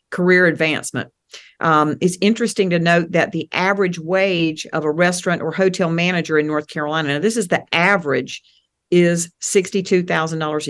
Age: 50-69